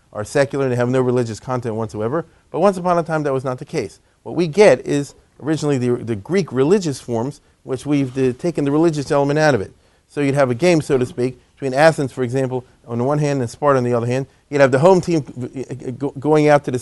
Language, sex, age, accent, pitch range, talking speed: English, male, 40-59, American, 125-160 Hz, 250 wpm